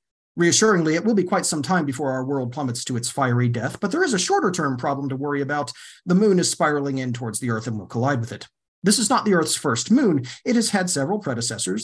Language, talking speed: English, 255 wpm